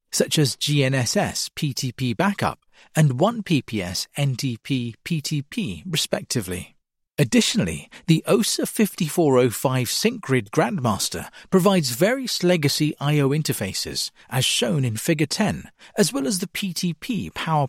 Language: English